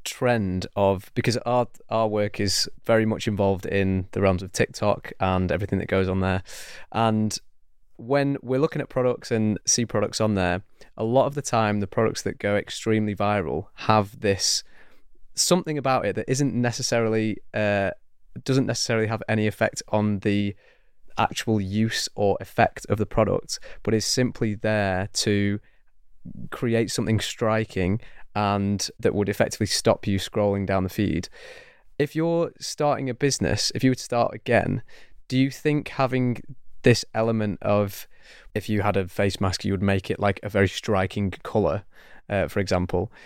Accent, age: British, 20-39